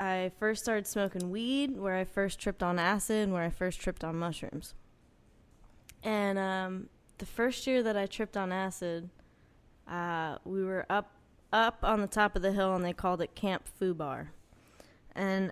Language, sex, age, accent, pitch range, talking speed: English, female, 20-39, American, 175-215 Hz, 175 wpm